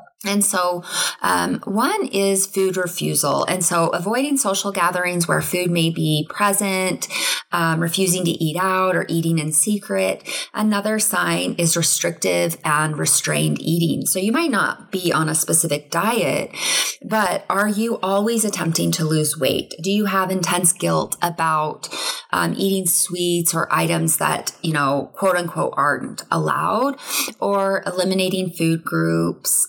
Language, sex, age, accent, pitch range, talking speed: English, female, 20-39, American, 155-200 Hz, 145 wpm